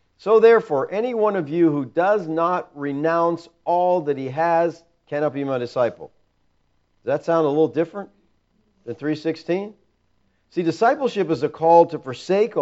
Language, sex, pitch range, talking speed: English, male, 130-180 Hz, 155 wpm